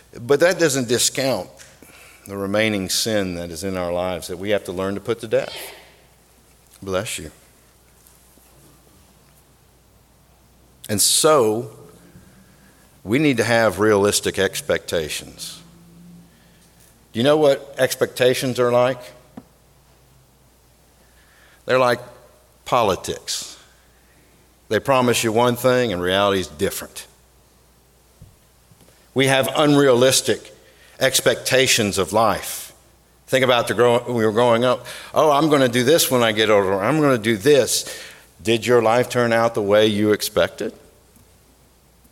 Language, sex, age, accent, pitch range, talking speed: English, male, 60-79, American, 85-125 Hz, 125 wpm